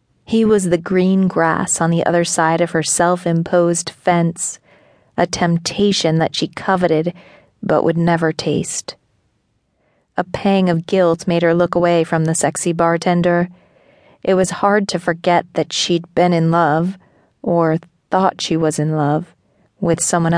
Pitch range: 165-180 Hz